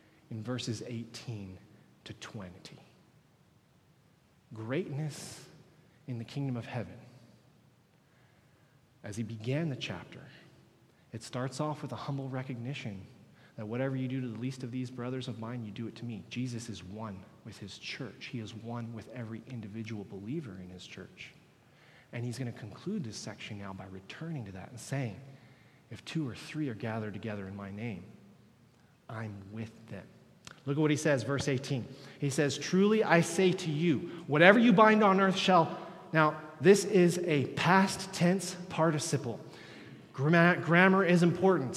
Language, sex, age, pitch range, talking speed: English, male, 30-49, 120-175 Hz, 165 wpm